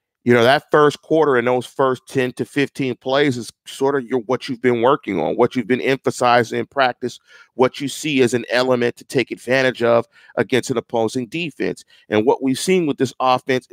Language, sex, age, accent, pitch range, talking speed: English, male, 40-59, American, 125-150 Hz, 205 wpm